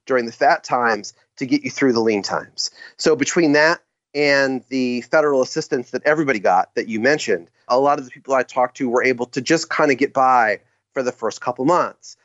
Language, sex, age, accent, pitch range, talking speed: English, male, 30-49, American, 125-150 Hz, 220 wpm